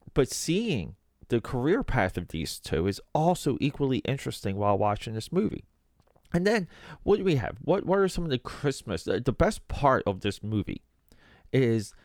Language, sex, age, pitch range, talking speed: English, male, 30-49, 95-135 Hz, 185 wpm